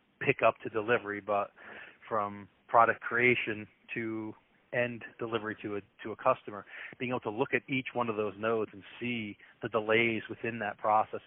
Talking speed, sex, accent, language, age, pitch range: 175 wpm, male, American, English, 30-49, 105-120 Hz